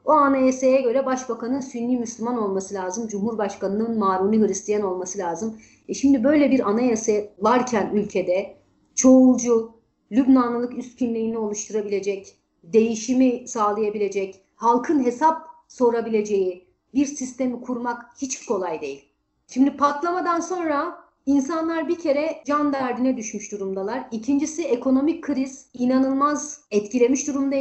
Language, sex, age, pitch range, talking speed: Turkish, female, 40-59, 210-265 Hz, 115 wpm